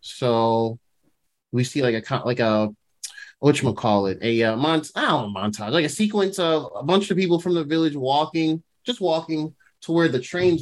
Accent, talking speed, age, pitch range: American, 175 wpm, 20-39, 120-155 Hz